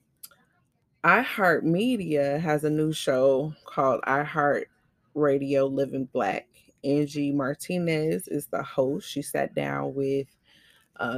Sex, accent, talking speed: female, American, 125 wpm